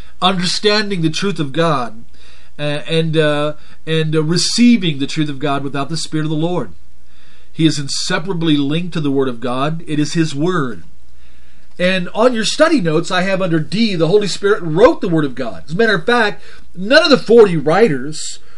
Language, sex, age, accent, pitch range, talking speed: English, male, 40-59, American, 140-185 Hz, 195 wpm